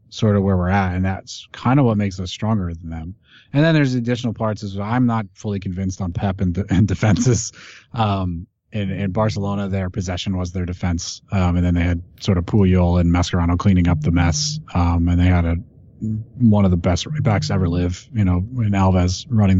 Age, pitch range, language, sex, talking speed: 30-49, 90-110 Hz, English, male, 220 wpm